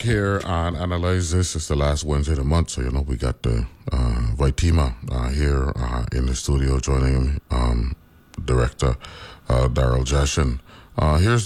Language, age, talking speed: English, 30-49, 170 wpm